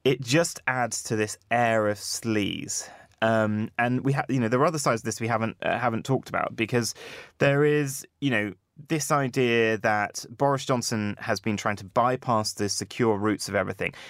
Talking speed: 185 wpm